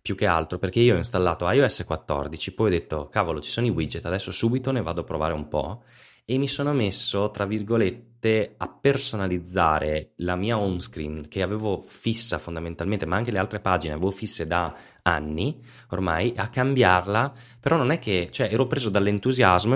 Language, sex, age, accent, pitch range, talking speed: Italian, male, 20-39, native, 90-120 Hz, 180 wpm